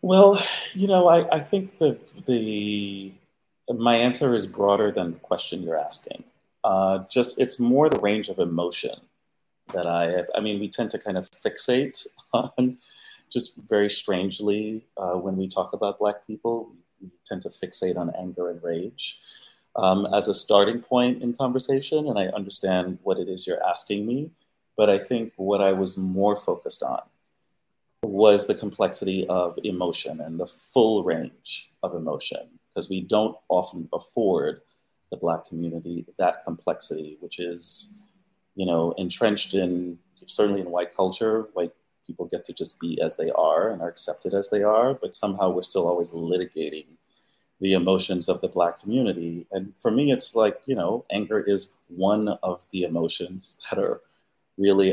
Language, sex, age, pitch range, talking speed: English, male, 30-49, 90-115 Hz, 165 wpm